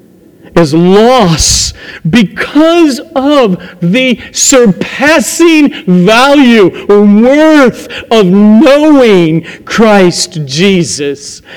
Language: English